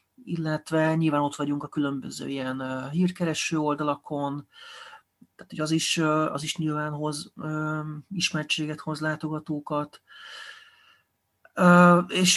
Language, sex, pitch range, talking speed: Hungarian, male, 150-175 Hz, 100 wpm